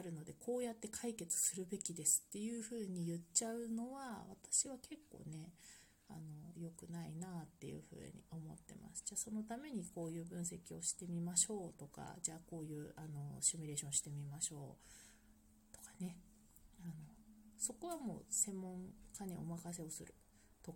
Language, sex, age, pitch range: Japanese, female, 30-49, 160-205 Hz